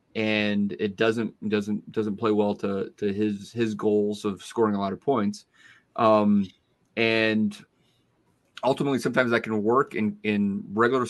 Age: 30-49